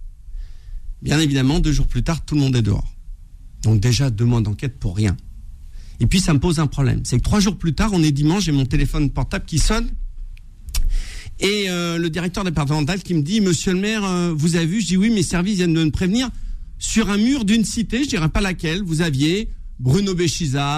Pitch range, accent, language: 105-175 Hz, French, French